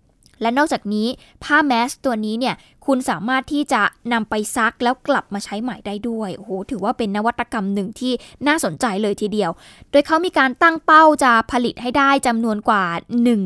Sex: female